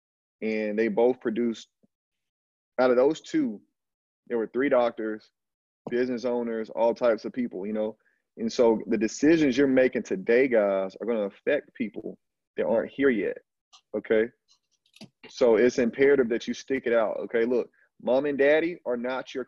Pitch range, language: 115-150 Hz, English